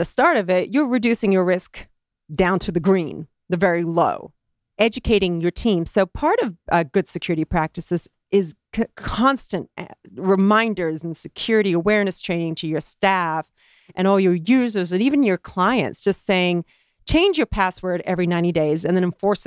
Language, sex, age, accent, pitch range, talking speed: English, female, 40-59, American, 175-220 Hz, 165 wpm